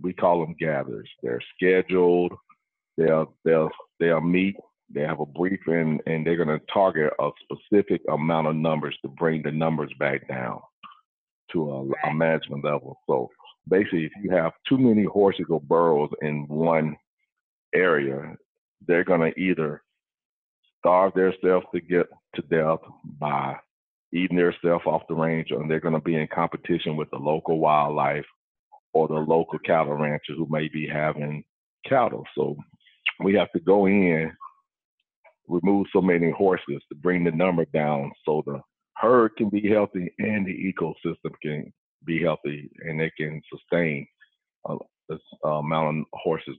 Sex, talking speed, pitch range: male, 155 wpm, 75-95 Hz